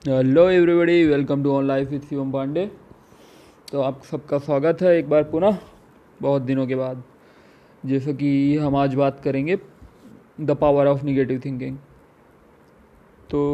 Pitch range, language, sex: 135-155 Hz, Hindi, male